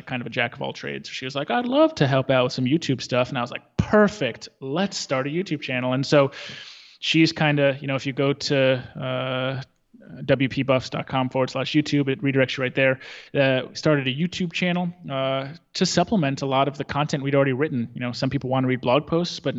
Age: 20-39